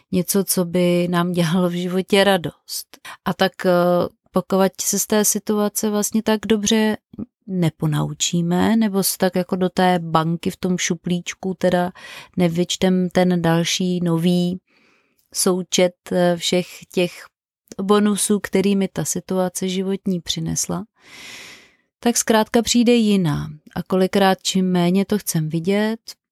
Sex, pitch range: female, 175-195 Hz